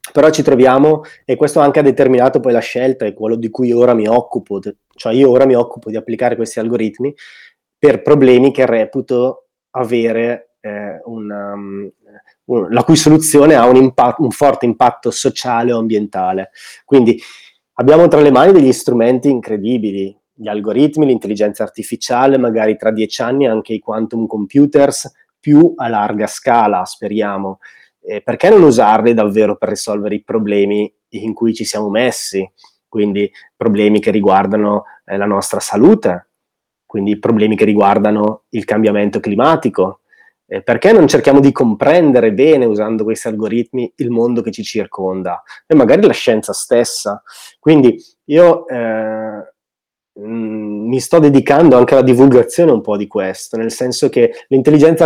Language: Italian